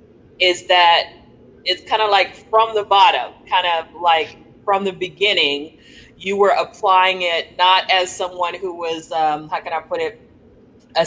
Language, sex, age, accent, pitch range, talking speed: English, female, 30-49, American, 155-185 Hz, 170 wpm